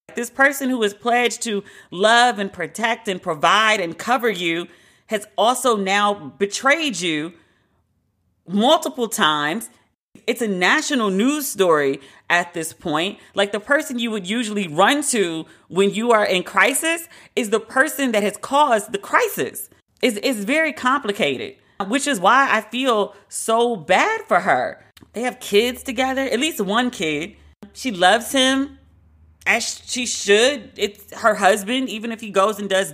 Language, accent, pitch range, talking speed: English, American, 195-260 Hz, 155 wpm